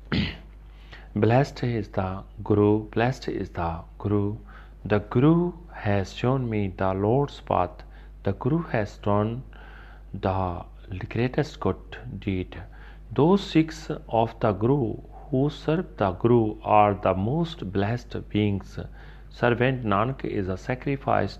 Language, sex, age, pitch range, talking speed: Punjabi, male, 40-59, 95-125 Hz, 120 wpm